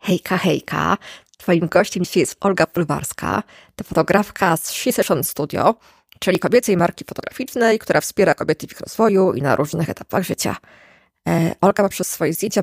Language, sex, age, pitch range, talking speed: Polish, female, 20-39, 165-200 Hz, 155 wpm